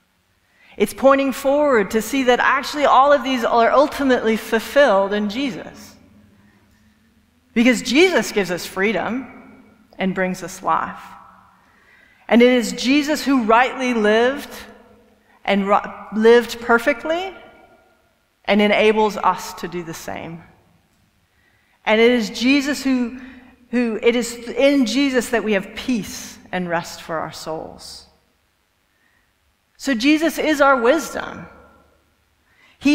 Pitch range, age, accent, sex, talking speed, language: 185-250 Hz, 40-59, American, female, 120 wpm, English